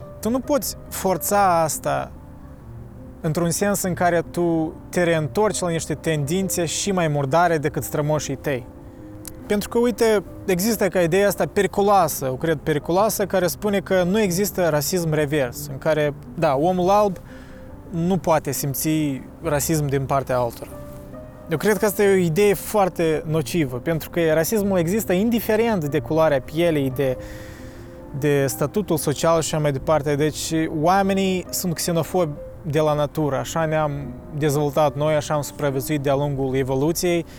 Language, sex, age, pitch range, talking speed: Romanian, male, 20-39, 145-185 Hz, 150 wpm